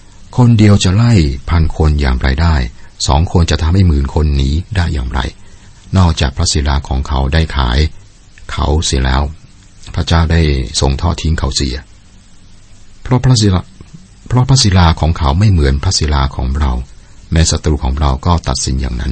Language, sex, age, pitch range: Thai, male, 60-79, 70-95 Hz